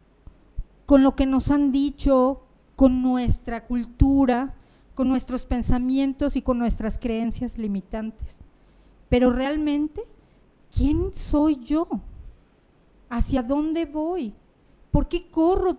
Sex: female